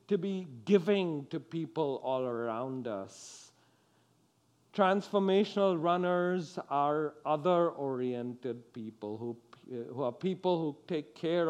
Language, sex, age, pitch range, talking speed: English, male, 50-69, 130-200 Hz, 105 wpm